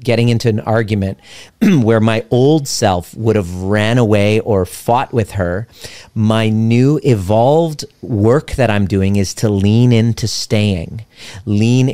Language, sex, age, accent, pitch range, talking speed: English, male, 40-59, American, 100-125 Hz, 145 wpm